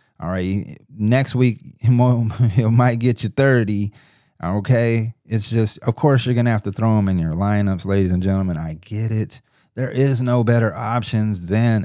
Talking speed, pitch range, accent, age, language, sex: 180 wpm, 100-130 Hz, American, 30-49, English, male